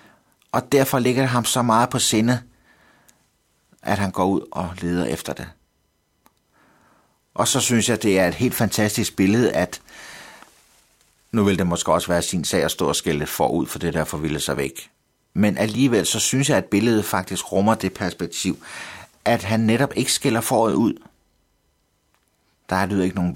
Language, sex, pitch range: Danish, male, 85-110 Hz